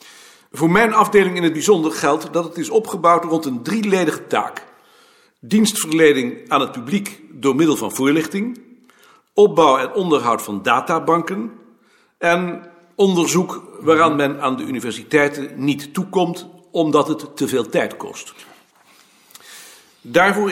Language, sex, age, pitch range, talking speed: Dutch, male, 50-69, 150-215 Hz, 130 wpm